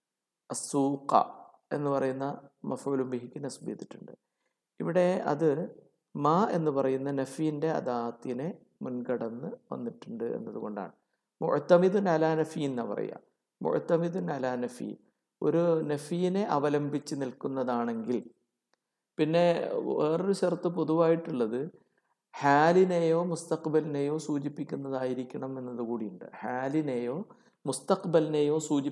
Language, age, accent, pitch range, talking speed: English, 60-79, Indian, 130-160 Hz, 75 wpm